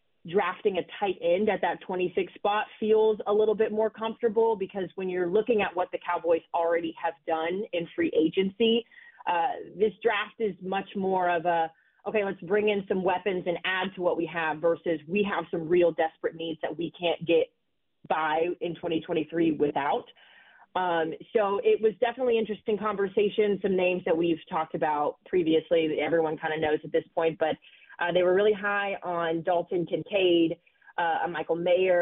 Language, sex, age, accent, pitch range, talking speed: English, female, 30-49, American, 170-205 Hz, 180 wpm